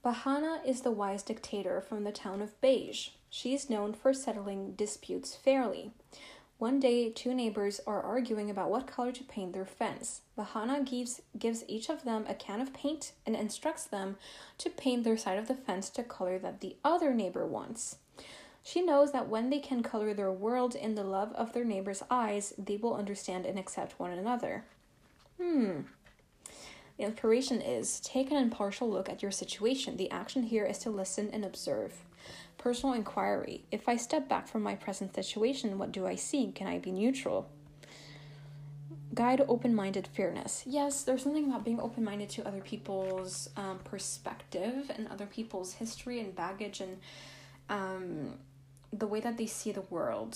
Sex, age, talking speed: female, 10-29, 175 wpm